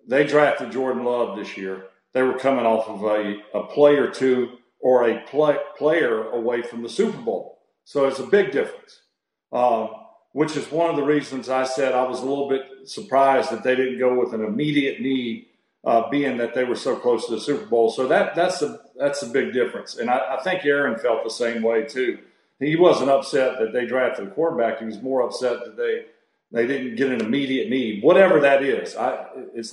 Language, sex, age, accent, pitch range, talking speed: English, male, 50-69, American, 115-145 Hz, 220 wpm